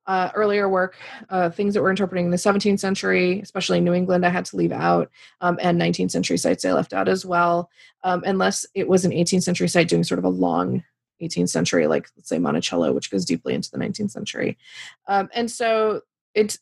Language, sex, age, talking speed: English, female, 20-39, 220 wpm